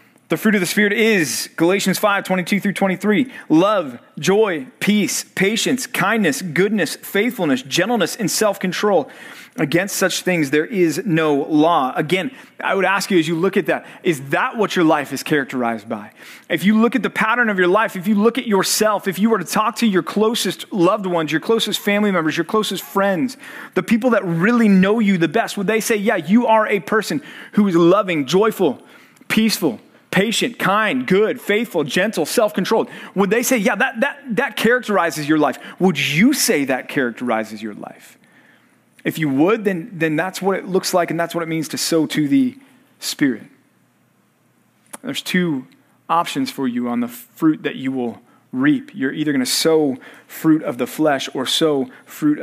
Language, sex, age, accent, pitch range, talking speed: English, male, 30-49, American, 165-225 Hz, 190 wpm